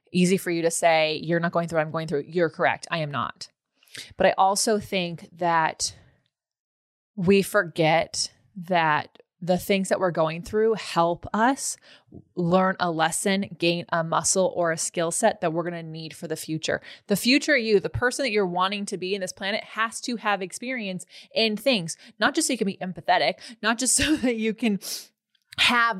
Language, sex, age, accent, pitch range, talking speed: English, female, 20-39, American, 170-220 Hz, 195 wpm